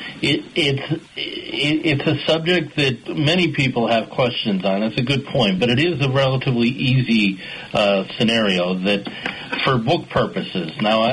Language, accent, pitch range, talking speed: English, American, 100-125 Hz, 155 wpm